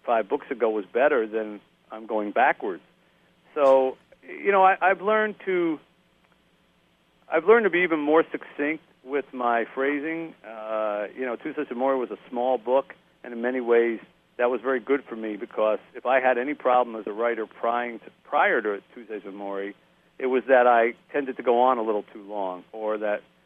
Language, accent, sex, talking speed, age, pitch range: English, American, male, 195 wpm, 50-69, 110-140 Hz